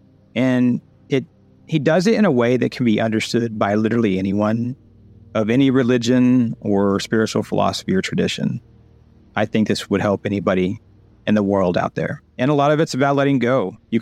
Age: 40-59